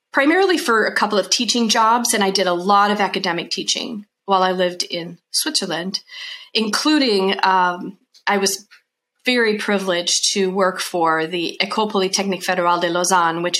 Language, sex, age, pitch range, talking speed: English, female, 40-59, 185-230 Hz, 160 wpm